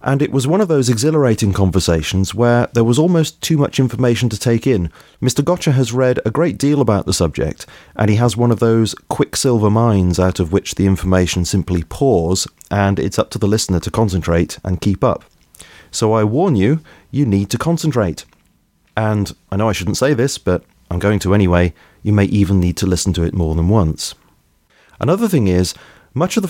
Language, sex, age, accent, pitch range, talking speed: English, male, 30-49, British, 95-120 Hz, 205 wpm